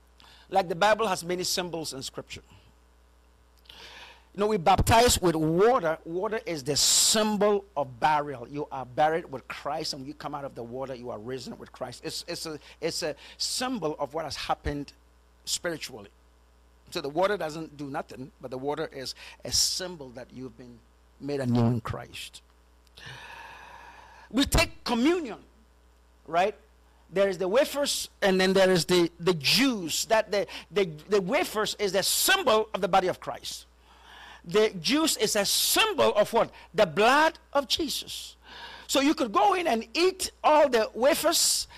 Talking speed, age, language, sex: 170 wpm, 50-69, English, male